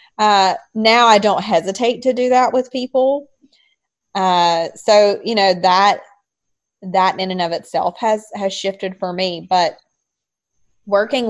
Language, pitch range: English, 170-205 Hz